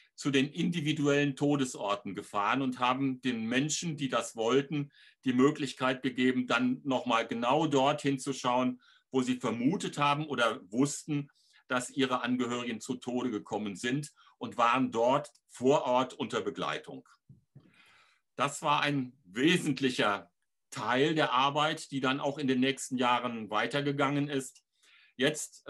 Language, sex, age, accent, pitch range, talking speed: German, male, 60-79, German, 125-145 Hz, 135 wpm